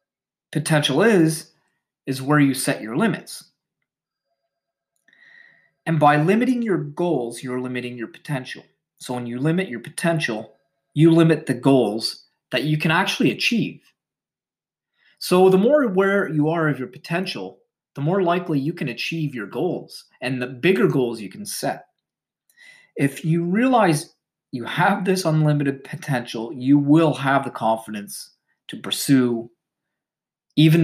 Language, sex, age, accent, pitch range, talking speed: English, male, 30-49, American, 130-170 Hz, 140 wpm